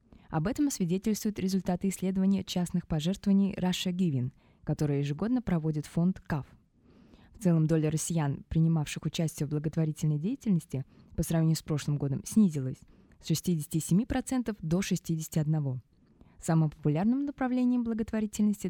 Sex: female